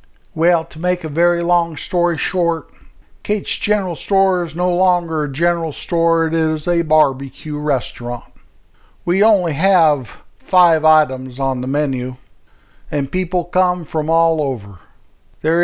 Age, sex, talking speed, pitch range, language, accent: 60-79, male, 140 wpm, 140-180 Hz, English, American